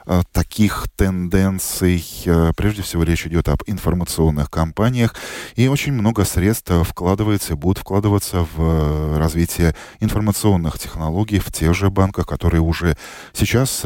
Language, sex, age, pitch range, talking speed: Russian, male, 20-39, 85-110 Hz, 120 wpm